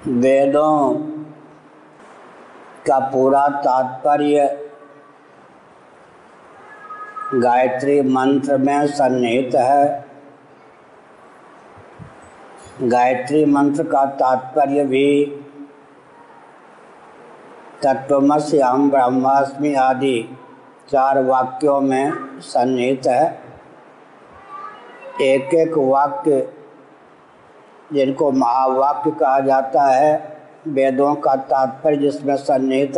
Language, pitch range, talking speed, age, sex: Hindi, 135-155 Hz, 60 wpm, 60-79, male